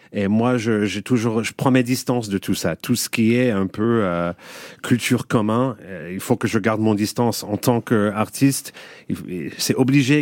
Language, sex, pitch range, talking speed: French, male, 100-120 Hz, 205 wpm